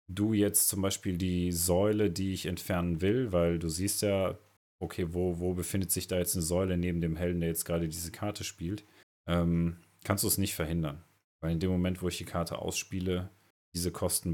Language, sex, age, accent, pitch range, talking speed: German, male, 30-49, German, 85-100 Hz, 205 wpm